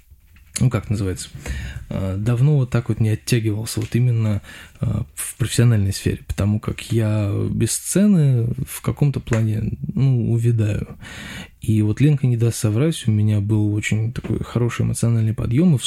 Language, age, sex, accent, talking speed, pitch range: Russian, 20-39, male, native, 155 wpm, 105-120 Hz